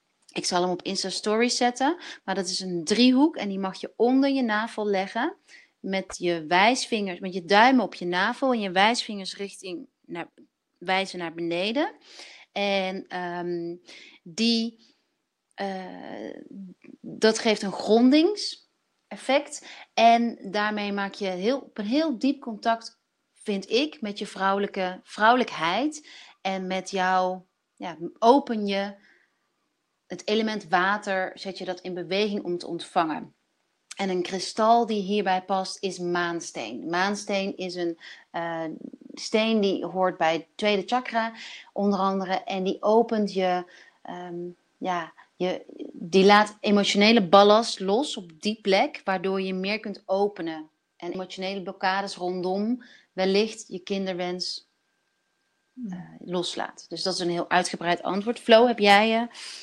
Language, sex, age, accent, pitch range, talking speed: Dutch, female, 30-49, Dutch, 185-230 Hz, 140 wpm